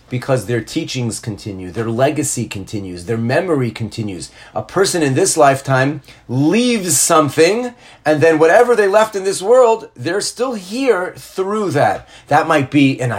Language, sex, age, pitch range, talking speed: English, male, 30-49, 125-165 Hz, 155 wpm